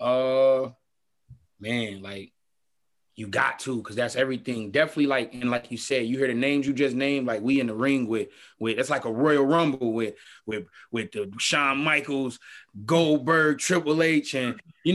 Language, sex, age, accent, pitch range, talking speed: English, male, 20-39, American, 105-130 Hz, 180 wpm